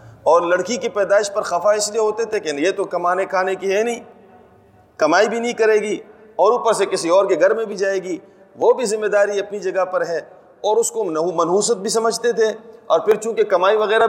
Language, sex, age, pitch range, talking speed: Urdu, male, 40-59, 155-220 Hz, 235 wpm